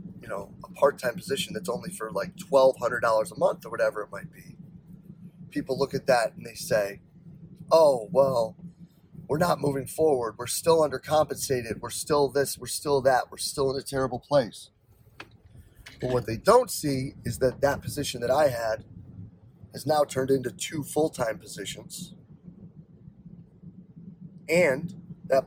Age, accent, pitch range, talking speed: 30-49, American, 120-165 Hz, 155 wpm